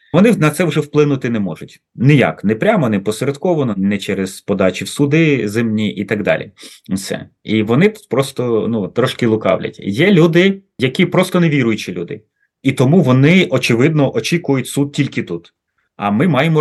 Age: 30-49